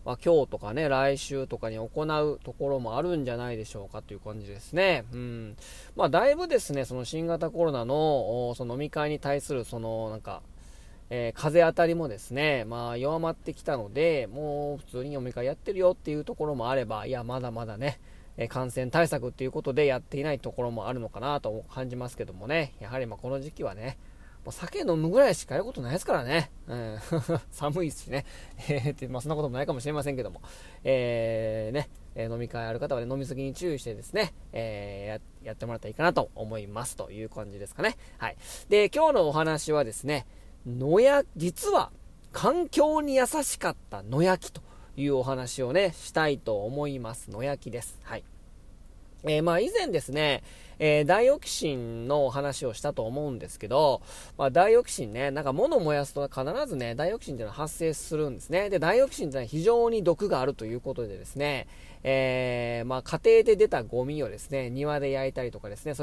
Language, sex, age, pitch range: Japanese, male, 20-39, 115-155 Hz